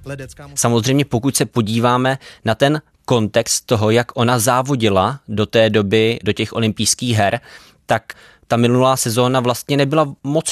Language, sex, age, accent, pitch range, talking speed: Czech, male, 20-39, native, 105-125 Hz, 145 wpm